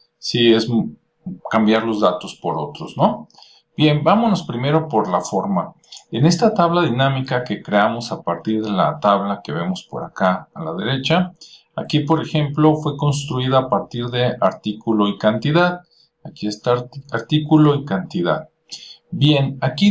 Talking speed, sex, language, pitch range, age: 155 wpm, male, Spanish, 120-165 Hz, 50-69